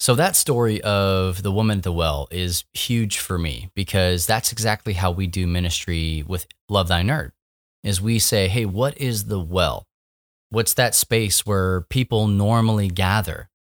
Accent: American